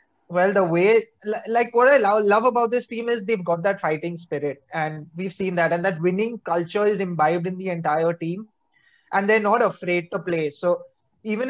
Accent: Indian